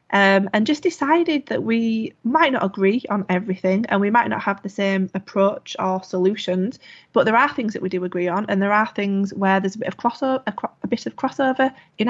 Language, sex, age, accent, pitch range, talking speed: English, female, 20-39, British, 195-225 Hz, 210 wpm